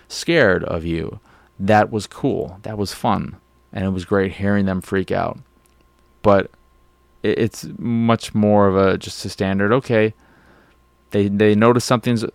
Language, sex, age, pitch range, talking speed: English, male, 20-39, 85-105 Hz, 150 wpm